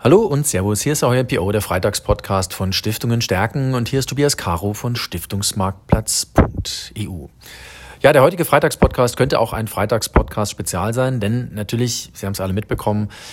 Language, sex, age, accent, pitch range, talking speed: German, male, 40-59, German, 105-130 Hz, 160 wpm